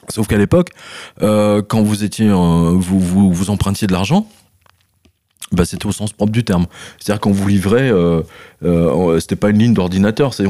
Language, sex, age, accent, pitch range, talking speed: French, male, 30-49, French, 90-110 Hz, 195 wpm